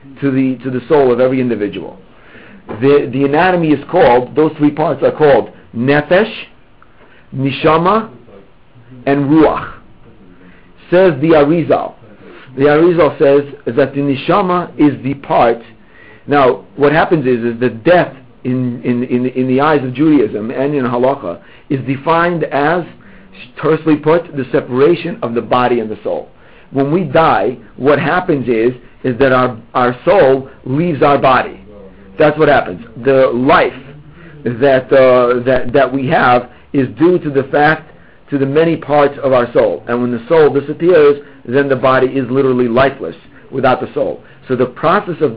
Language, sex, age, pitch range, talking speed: English, male, 50-69, 125-155 Hz, 160 wpm